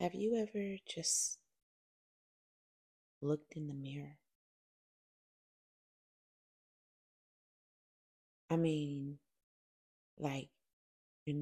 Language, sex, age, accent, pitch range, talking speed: English, female, 30-49, American, 135-160 Hz, 65 wpm